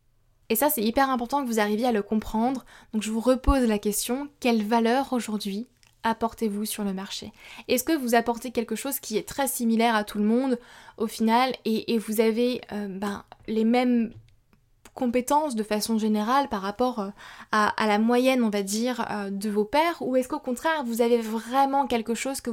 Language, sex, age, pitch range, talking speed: French, female, 20-39, 210-250 Hz, 200 wpm